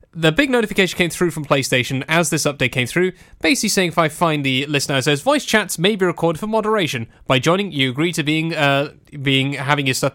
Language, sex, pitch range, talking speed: English, male, 140-180 Hz, 230 wpm